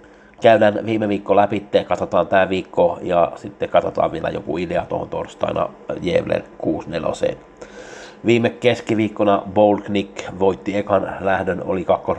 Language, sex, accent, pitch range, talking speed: Finnish, male, native, 95-105 Hz, 130 wpm